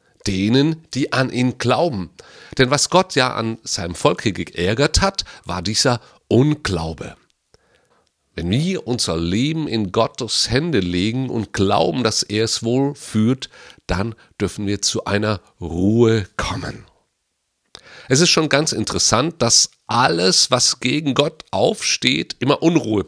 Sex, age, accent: male, 40-59, German